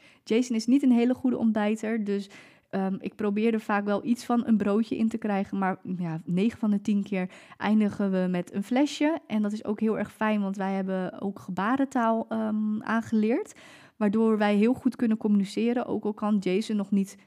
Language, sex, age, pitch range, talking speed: Dutch, female, 20-39, 195-225 Hz, 200 wpm